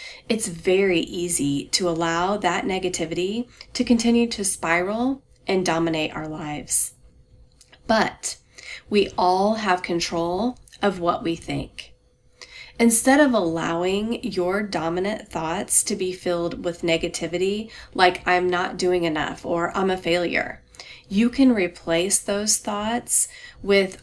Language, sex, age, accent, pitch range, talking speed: English, female, 30-49, American, 175-225 Hz, 125 wpm